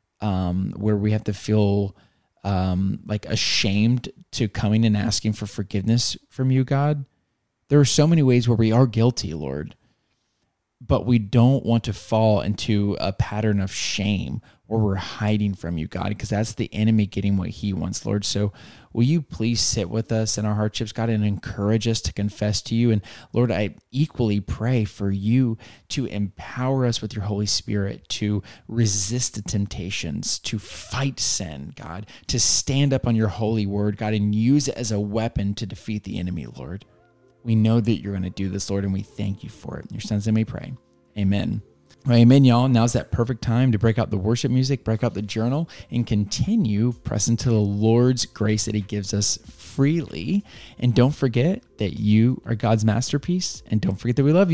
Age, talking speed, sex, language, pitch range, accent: 20-39, 195 wpm, male, English, 100-120 Hz, American